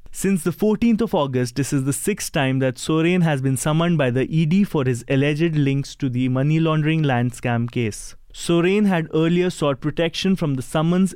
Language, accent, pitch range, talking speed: English, Indian, 135-175 Hz, 200 wpm